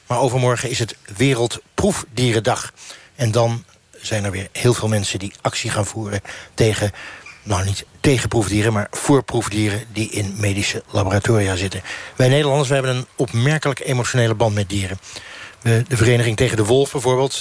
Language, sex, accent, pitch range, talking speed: Dutch, male, Dutch, 105-130 Hz, 150 wpm